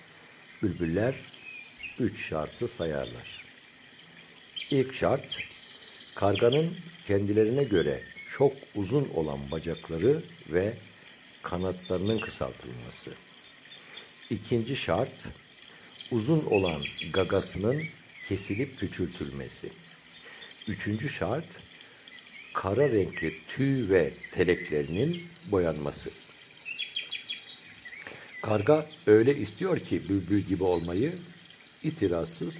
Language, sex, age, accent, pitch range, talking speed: Turkish, male, 60-79, native, 90-130 Hz, 70 wpm